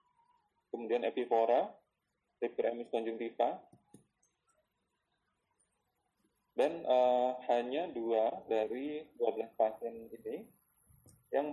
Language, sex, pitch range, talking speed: Indonesian, male, 115-140 Hz, 70 wpm